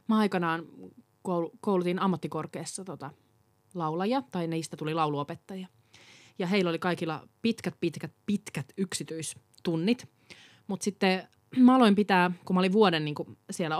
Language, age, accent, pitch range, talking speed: Finnish, 20-39, native, 160-205 Hz, 125 wpm